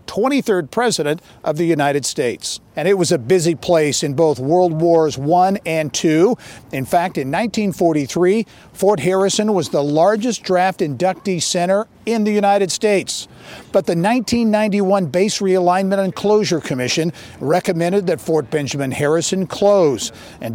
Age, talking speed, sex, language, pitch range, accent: 50-69, 145 wpm, male, English, 155-200 Hz, American